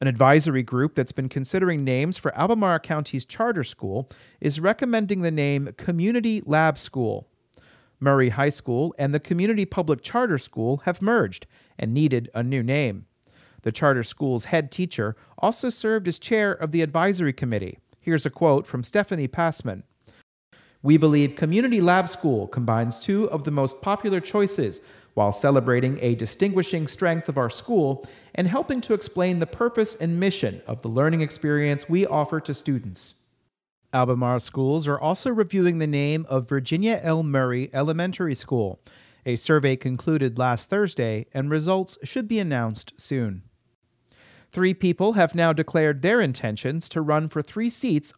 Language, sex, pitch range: English, male, 130-180 Hz